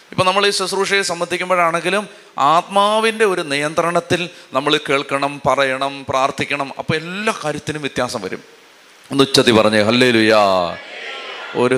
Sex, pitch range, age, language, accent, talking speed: male, 125-170 Hz, 30-49, Malayalam, native, 110 wpm